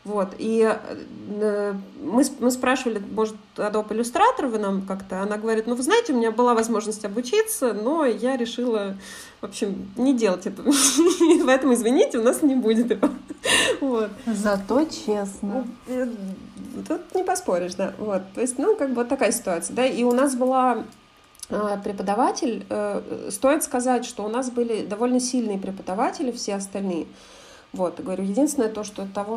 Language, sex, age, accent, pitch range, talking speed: Russian, female, 20-39, native, 195-255 Hz, 140 wpm